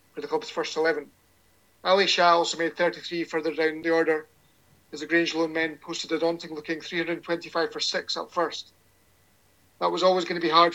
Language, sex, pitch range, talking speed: English, male, 155-180 Hz, 195 wpm